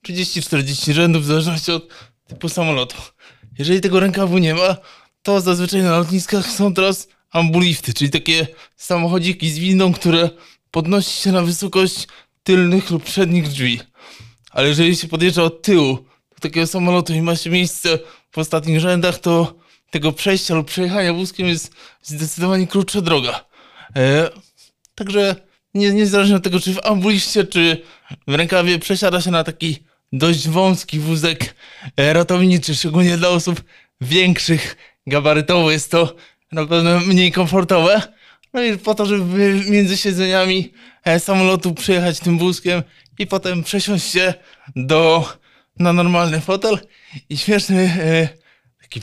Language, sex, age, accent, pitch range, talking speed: Polish, male, 20-39, native, 155-185 Hz, 140 wpm